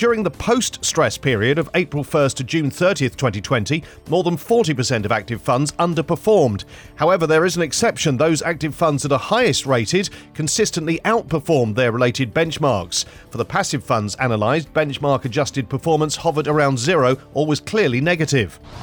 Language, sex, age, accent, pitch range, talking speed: English, male, 40-59, British, 130-165 Hz, 155 wpm